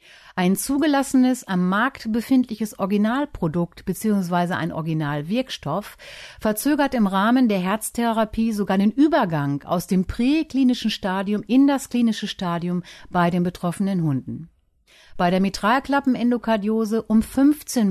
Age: 60-79